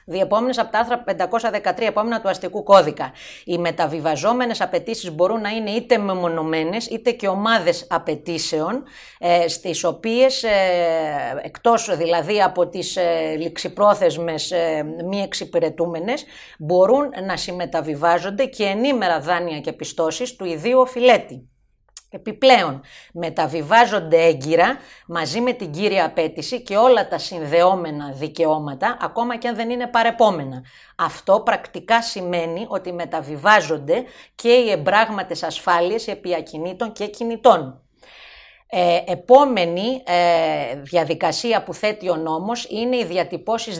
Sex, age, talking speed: female, 30-49, 120 wpm